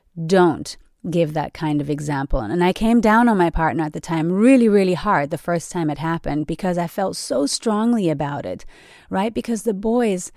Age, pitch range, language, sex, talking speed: 30-49, 160-205 Hz, English, female, 205 wpm